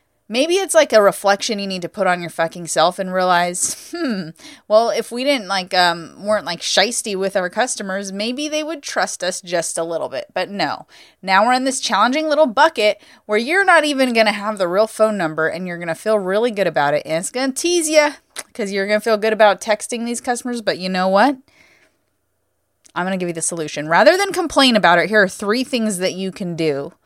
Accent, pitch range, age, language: American, 170-245 Hz, 20-39, English